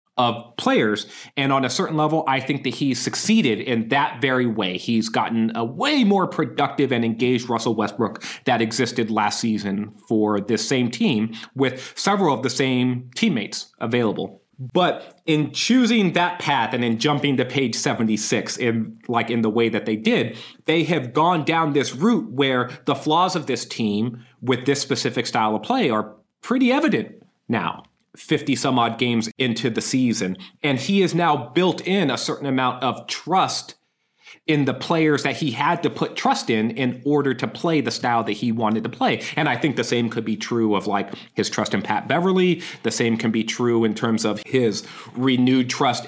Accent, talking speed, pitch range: American, 190 wpm, 120-170 Hz